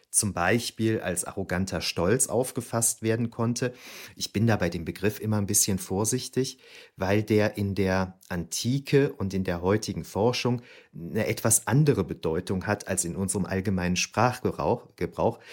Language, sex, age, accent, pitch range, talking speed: German, male, 40-59, German, 95-115 Hz, 145 wpm